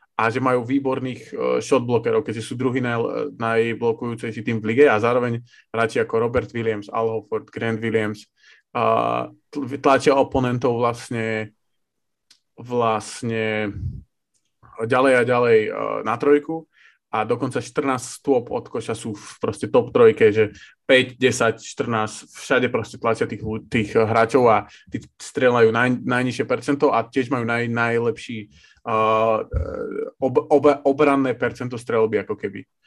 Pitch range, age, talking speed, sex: 115-140 Hz, 20-39, 130 wpm, male